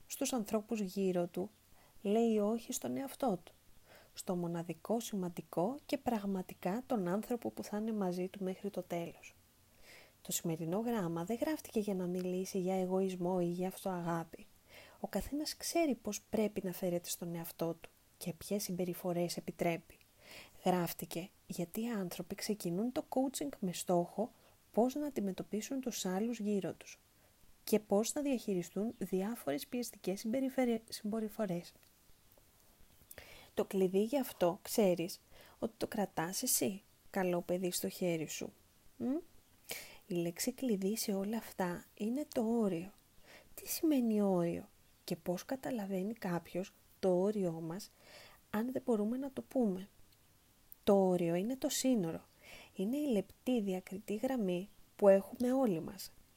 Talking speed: 135 wpm